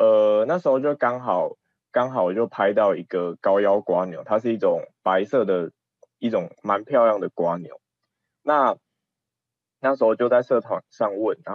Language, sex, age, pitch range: Chinese, male, 20-39, 105-155 Hz